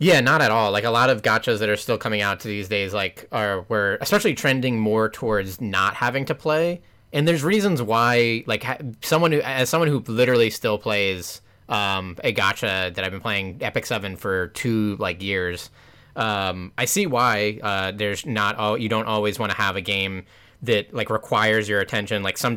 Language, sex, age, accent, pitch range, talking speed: English, male, 20-39, American, 100-120 Hz, 205 wpm